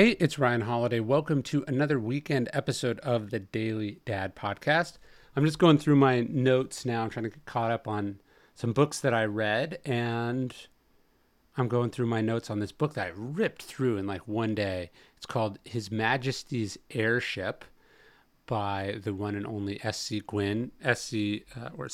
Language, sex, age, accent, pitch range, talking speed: English, male, 40-59, American, 105-125 Hz, 175 wpm